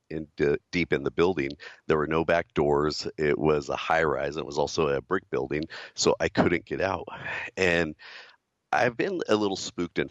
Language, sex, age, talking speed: English, male, 50-69, 195 wpm